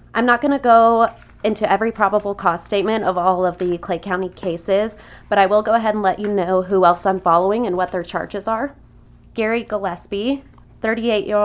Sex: female